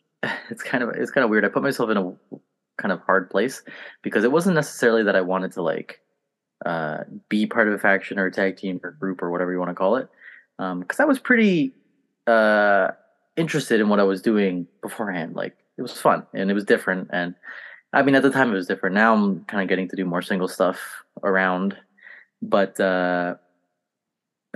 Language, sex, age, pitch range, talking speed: English, male, 20-39, 95-150 Hz, 215 wpm